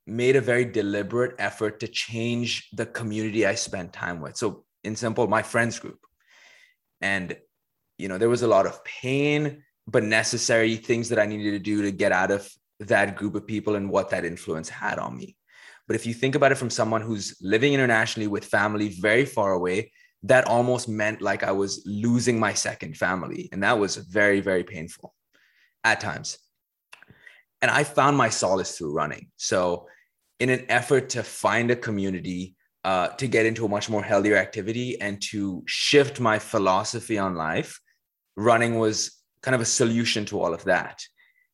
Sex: male